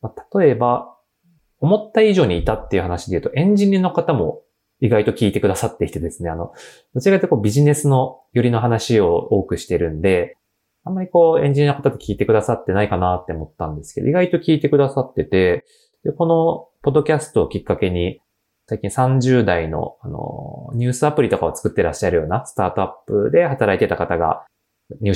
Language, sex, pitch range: Japanese, male, 110-185 Hz